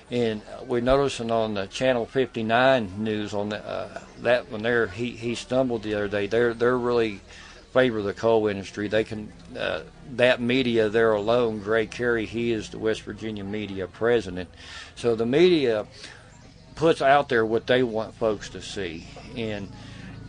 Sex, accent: male, American